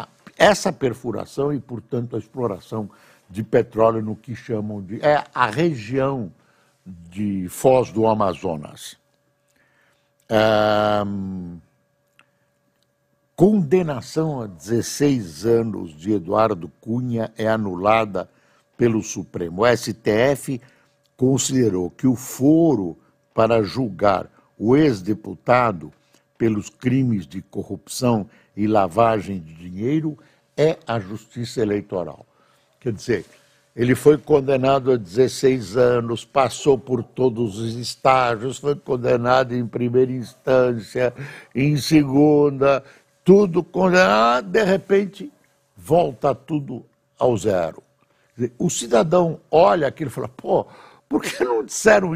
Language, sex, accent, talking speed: Portuguese, male, Brazilian, 105 wpm